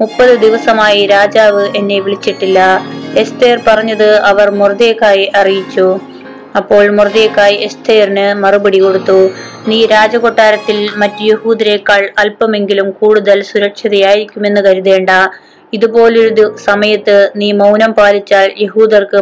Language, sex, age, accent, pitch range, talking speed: Malayalam, female, 20-39, native, 200-220 Hz, 85 wpm